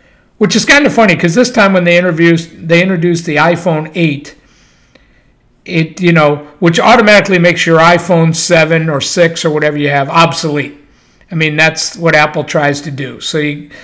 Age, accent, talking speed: 50-69, American, 180 wpm